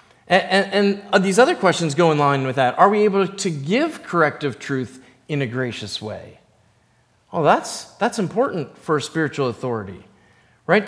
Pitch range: 140-200 Hz